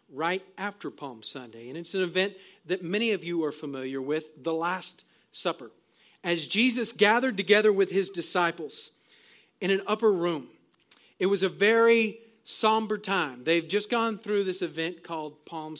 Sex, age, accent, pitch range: male, 40-59, American, 155-205 Hz